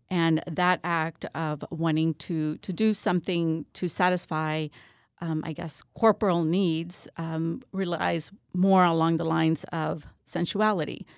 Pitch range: 155-180 Hz